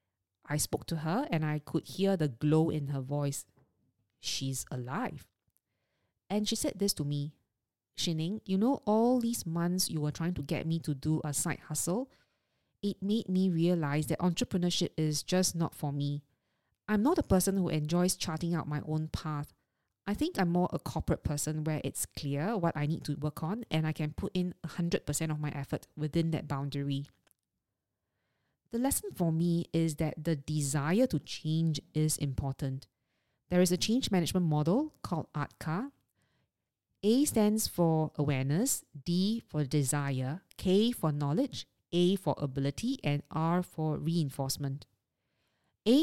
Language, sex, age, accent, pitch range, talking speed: English, female, 20-39, Malaysian, 145-180 Hz, 165 wpm